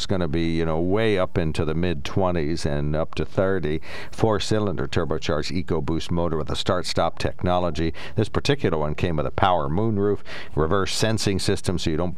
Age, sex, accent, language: 60-79, male, American, English